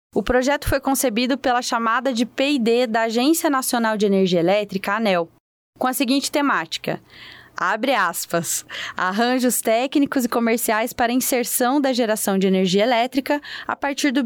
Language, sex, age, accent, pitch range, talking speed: Portuguese, female, 20-39, Brazilian, 220-265 Hz, 145 wpm